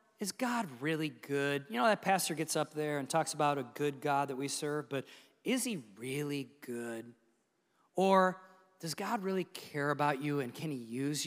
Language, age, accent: English, 40-59, American